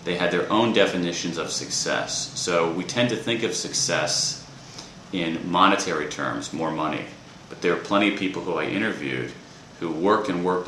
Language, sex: Japanese, male